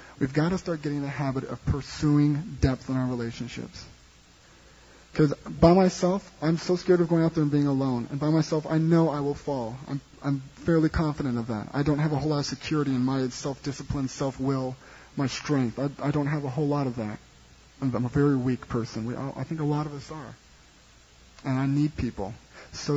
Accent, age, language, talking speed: American, 30-49, English, 215 wpm